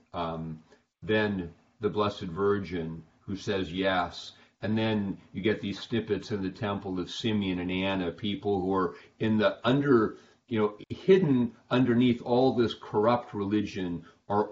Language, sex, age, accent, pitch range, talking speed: English, male, 40-59, American, 95-110 Hz, 150 wpm